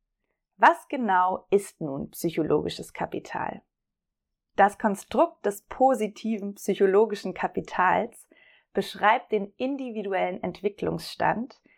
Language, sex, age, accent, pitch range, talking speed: German, female, 30-49, German, 185-230 Hz, 80 wpm